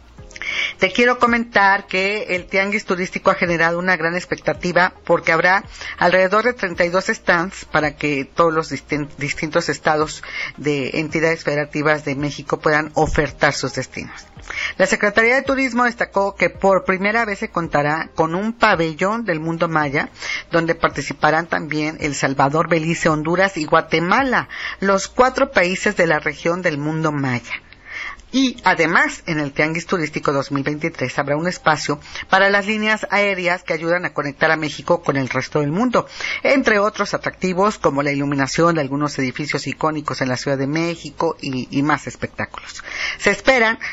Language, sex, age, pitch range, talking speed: Spanish, female, 40-59, 150-195 Hz, 155 wpm